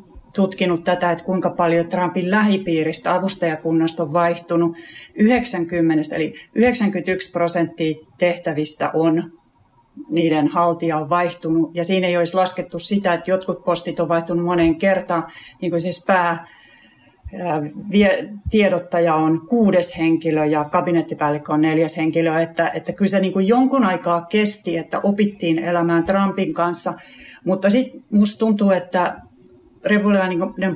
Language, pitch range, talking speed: Finnish, 170-195 Hz, 125 wpm